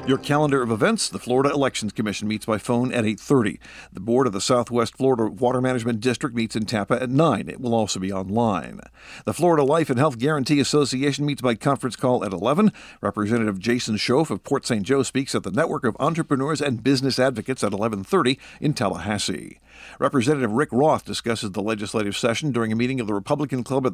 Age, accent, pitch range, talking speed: 50-69, American, 110-140 Hz, 200 wpm